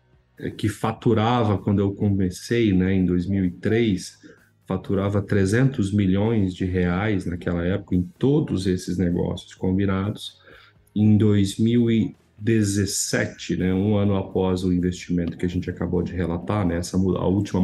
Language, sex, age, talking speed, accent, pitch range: Portuguese, male, 40-59, 125 wpm, Brazilian, 90-105 Hz